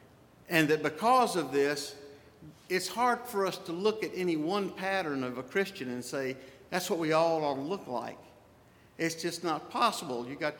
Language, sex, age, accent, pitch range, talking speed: English, male, 50-69, American, 145-195 Hz, 195 wpm